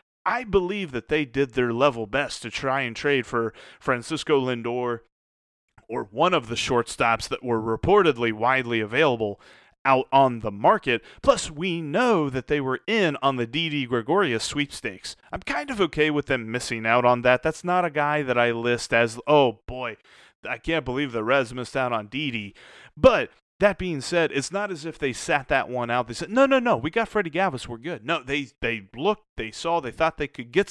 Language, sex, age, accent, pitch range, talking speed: English, male, 30-49, American, 120-165 Hz, 205 wpm